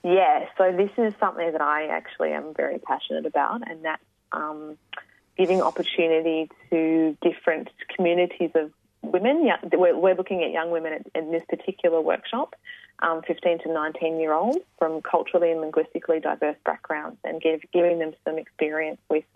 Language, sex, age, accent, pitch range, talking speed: English, female, 20-39, Australian, 155-180 Hz, 165 wpm